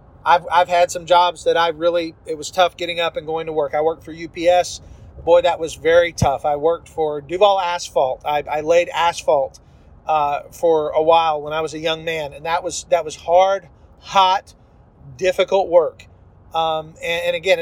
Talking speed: 200 wpm